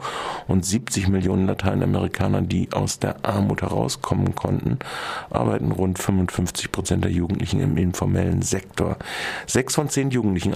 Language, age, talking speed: German, 50-69, 130 wpm